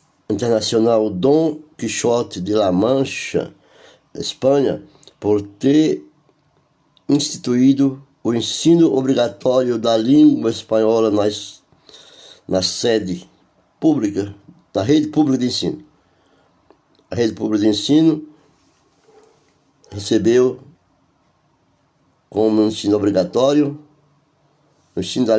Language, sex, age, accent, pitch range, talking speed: Portuguese, male, 60-79, Brazilian, 110-150 Hz, 85 wpm